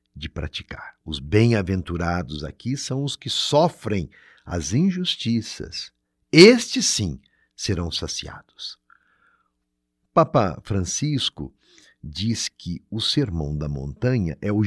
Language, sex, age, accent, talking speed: Portuguese, male, 60-79, Brazilian, 105 wpm